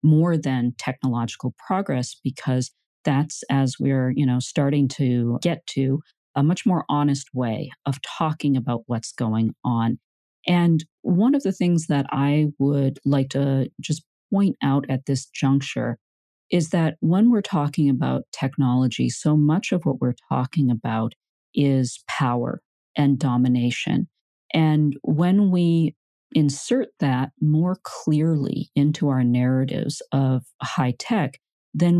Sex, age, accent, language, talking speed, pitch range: female, 40-59, American, English, 135 wpm, 130-155 Hz